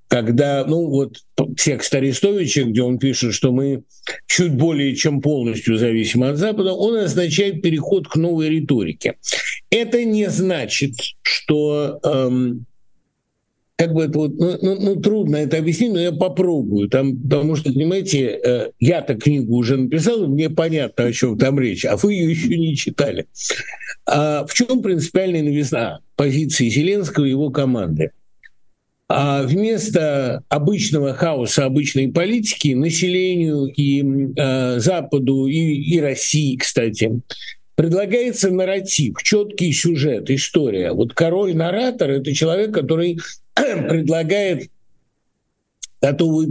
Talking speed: 130 wpm